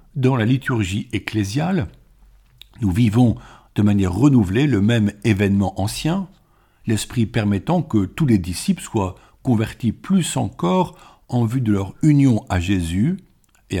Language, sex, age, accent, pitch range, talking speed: French, male, 60-79, French, 105-140 Hz, 135 wpm